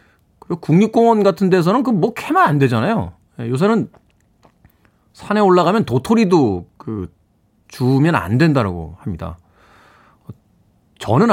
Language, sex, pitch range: Korean, male, 105-155 Hz